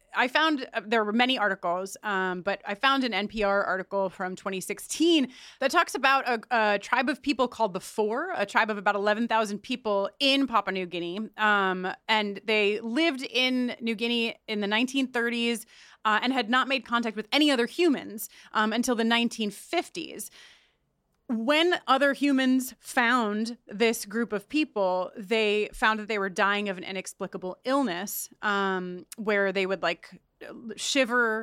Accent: American